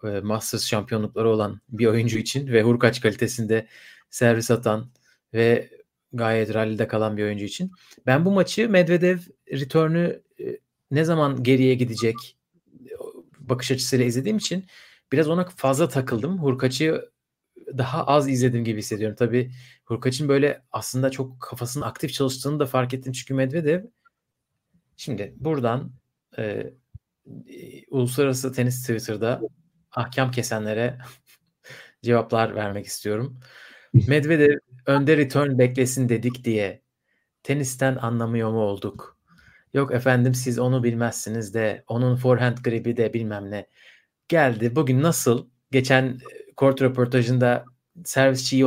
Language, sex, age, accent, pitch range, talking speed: Turkish, male, 40-59, native, 115-145 Hz, 115 wpm